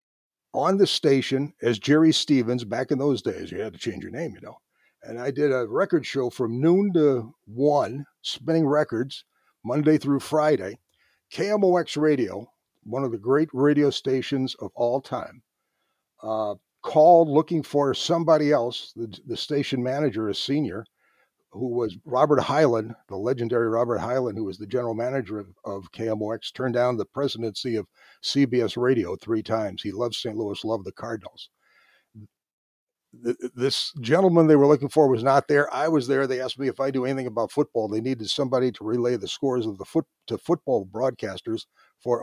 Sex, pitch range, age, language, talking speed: male, 115-150 Hz, 60-79, English, 175 wpm